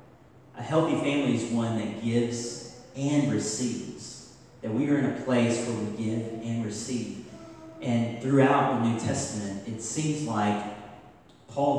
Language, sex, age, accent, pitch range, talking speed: English, male, 40-59, American, 110-135 Hz, 150 wpm